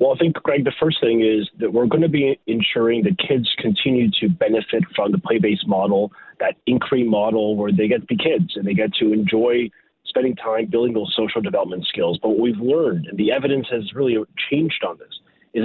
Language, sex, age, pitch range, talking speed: English, male, 30-49, 105-135 Hz, 220 wpm